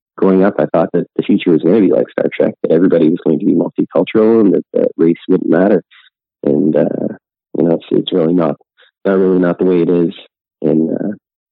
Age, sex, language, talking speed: 30-49, male, English, 225 wpm